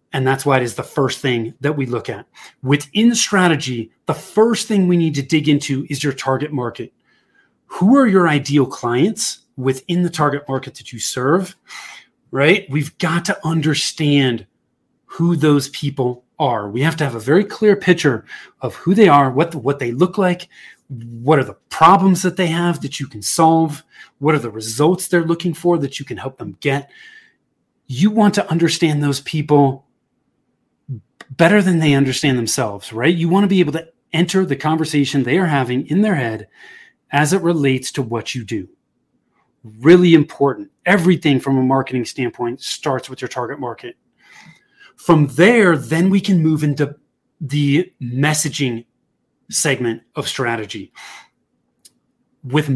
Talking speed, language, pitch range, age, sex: 170 wpm, English, 135-175 Hz, 30-49, male